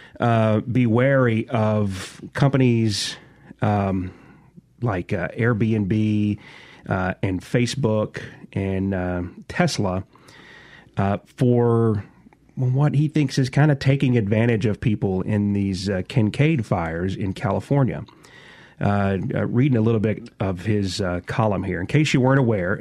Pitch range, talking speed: 105-135 Hz, 130 wpm